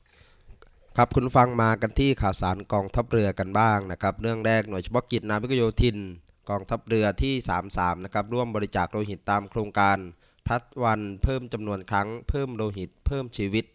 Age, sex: 20-39, male